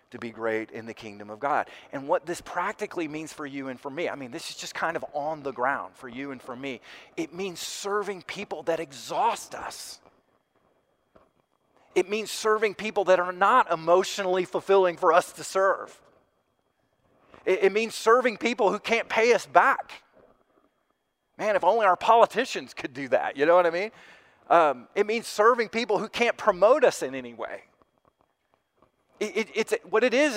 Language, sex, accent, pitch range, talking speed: English, male, American, 135-205 Hz, 180 wpm